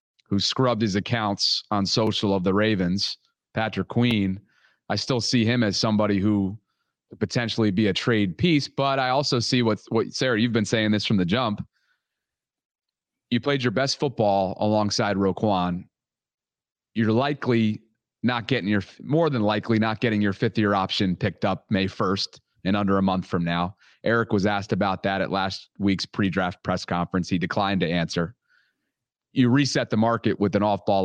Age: 30-49